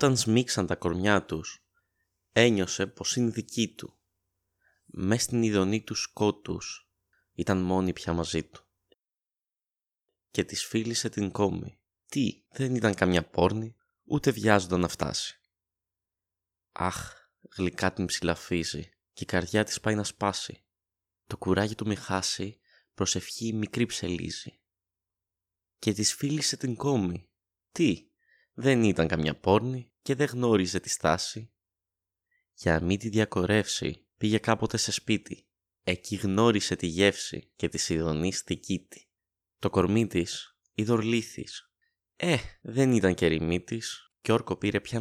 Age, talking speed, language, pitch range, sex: 20-39, 130 wpm, Greek, 95-110 Hz, male